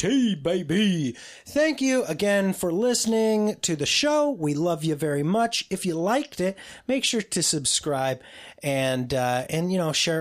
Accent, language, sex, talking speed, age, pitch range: American, English, male, 165 wpm, 30-49, 145-195 Hz